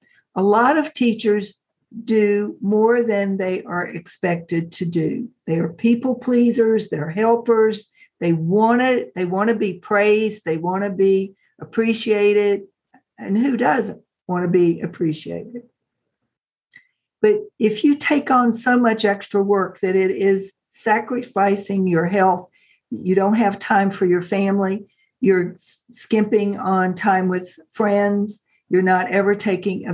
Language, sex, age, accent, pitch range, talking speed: English, female, 60-79, American, 190-235 Hz, 140 wpm